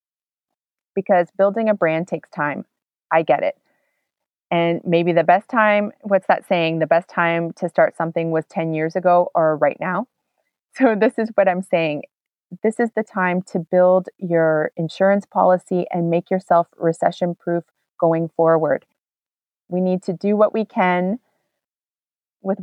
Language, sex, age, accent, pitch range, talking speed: English, female, 30-49, American, 165-205 Hz, 155 wpm